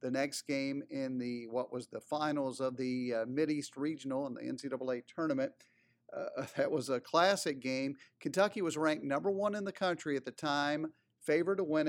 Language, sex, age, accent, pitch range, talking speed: English, male, 50-69, American, 135-170 Hz, 190 wpm